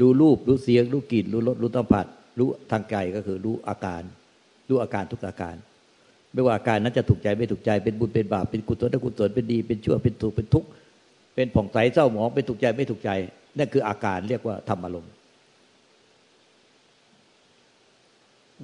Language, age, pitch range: Thai, 60-79, 105-130 Hz